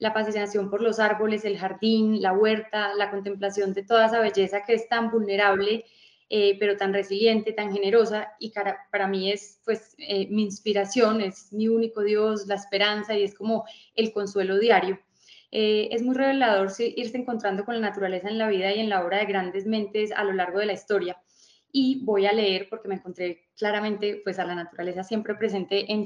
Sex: female